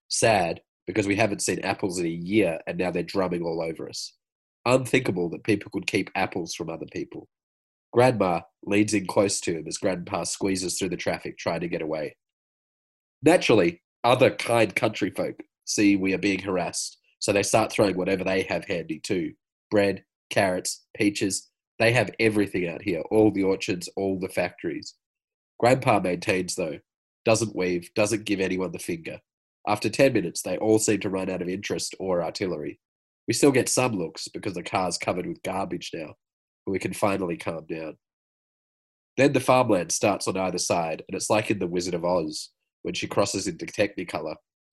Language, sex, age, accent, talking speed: English, male, 30-49, Australian, 180 wpm